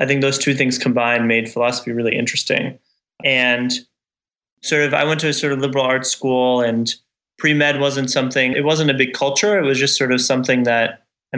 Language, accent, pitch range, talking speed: English, American, 120-135 Hz, 210 wpm